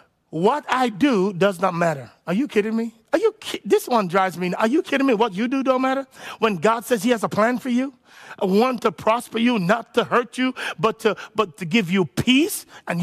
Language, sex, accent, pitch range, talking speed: English, male, American, 185-245 Hz, 240 wpm